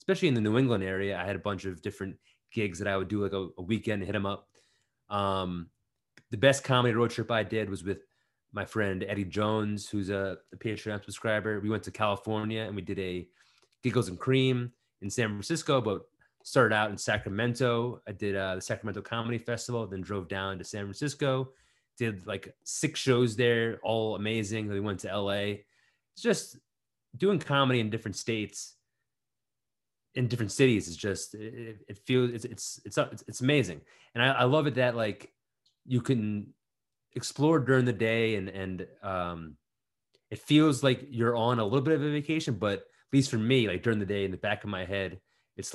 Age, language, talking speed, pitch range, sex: 20-39, English, 195 wpm, 100-125 Hz, male